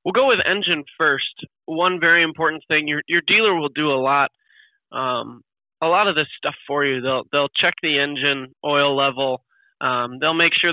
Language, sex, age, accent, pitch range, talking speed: English, male, 20-39, American, 135-165 Hz, 195 wpm